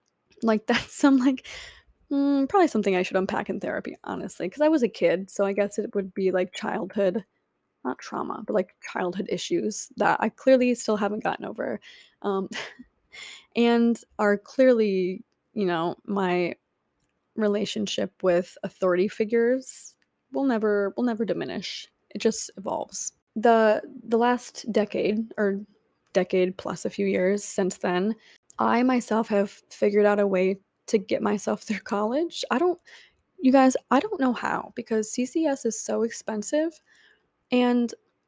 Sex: female